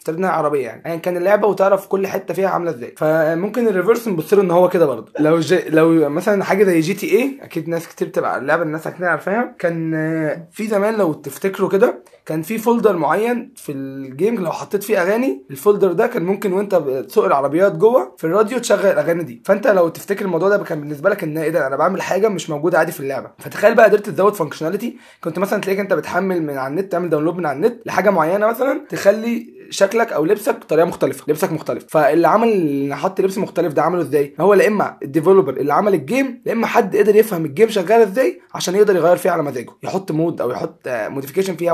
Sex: male